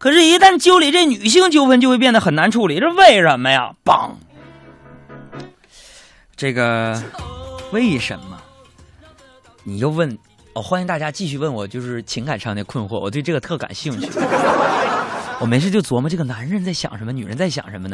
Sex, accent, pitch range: male, native, 115-185 Hz